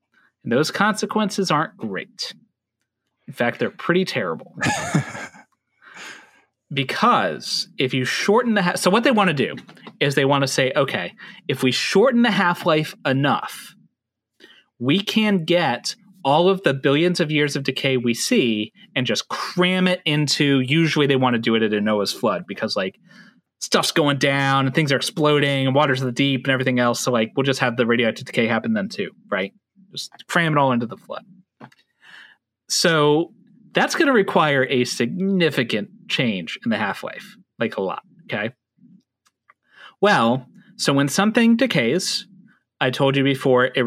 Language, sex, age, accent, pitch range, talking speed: English, male, 30-49, American, 130-195 Hz, 165 wpm